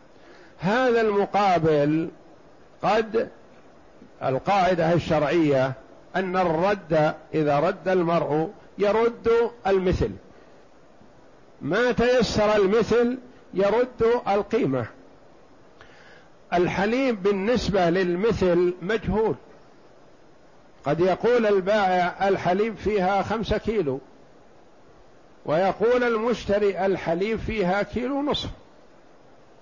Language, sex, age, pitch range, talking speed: Arabic, male, 50-69, 165-210 Hz, 70 wpm